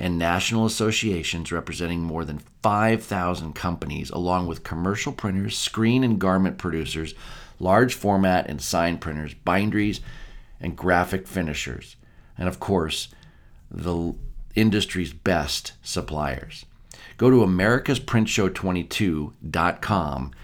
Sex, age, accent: male, 50-69, American